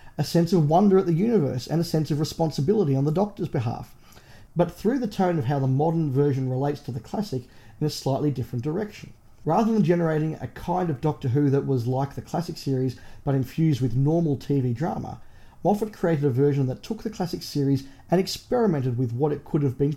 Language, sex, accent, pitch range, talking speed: English, male, Australian, 135-170 Hz, 215 wpm